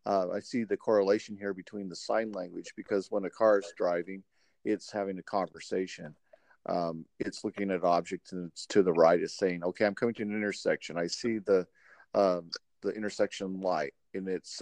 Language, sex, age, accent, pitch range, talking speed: English, male, 50-69, American, 90-110 Hz, 195 wpm